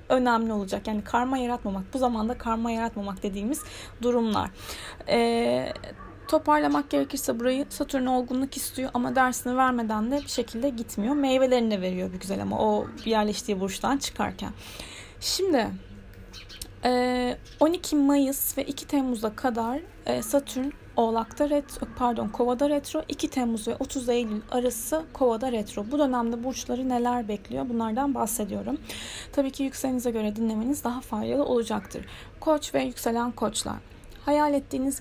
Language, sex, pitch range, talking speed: Turkish, female, 230-270 Hz, 130 wpm